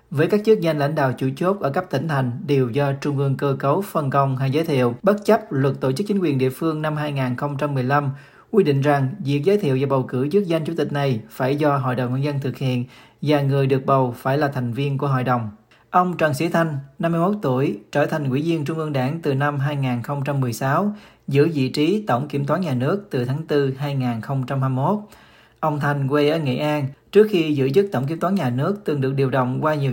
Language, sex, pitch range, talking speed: Vietnamese, male, 130-160 Hz, 230 wpm